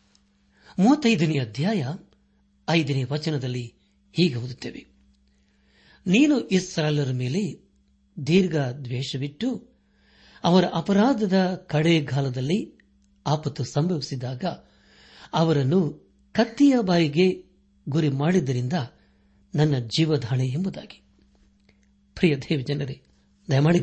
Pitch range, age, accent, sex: 115-180 Hz, 60-79, native, male